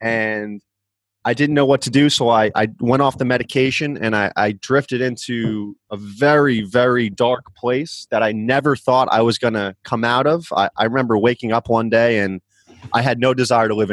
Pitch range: 110-135 Hz